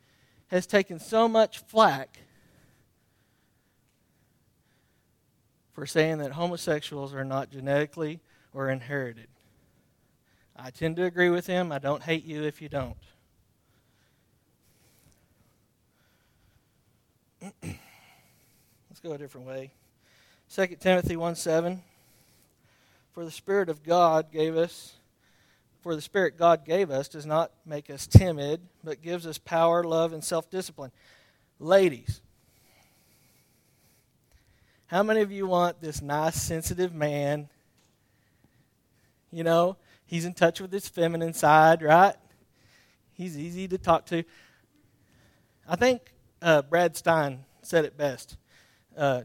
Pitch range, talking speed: 125-170 Hz, 115 wpm